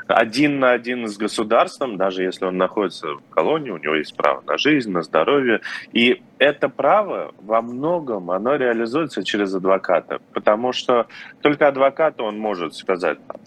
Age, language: 20-39, Russian